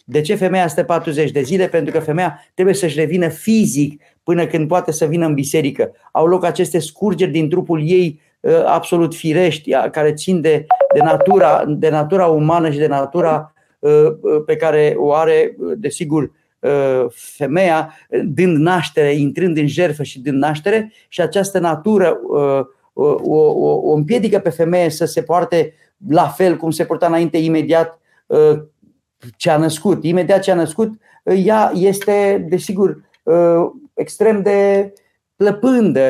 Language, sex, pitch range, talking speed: Romanian, male, 155-195 Hz, 145 wpm